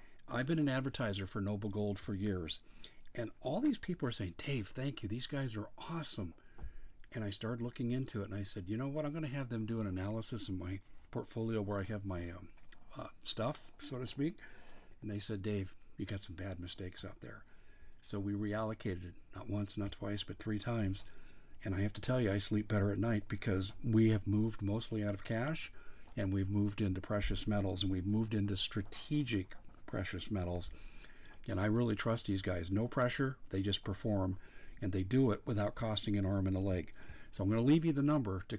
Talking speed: 220 wpm